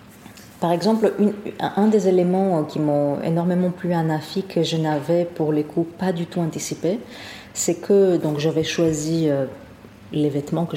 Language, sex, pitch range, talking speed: French, female, 150-190 Hz, 160 wpm